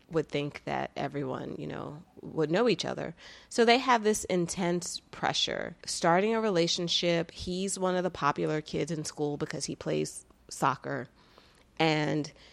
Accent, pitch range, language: American, 145-180 Hz, English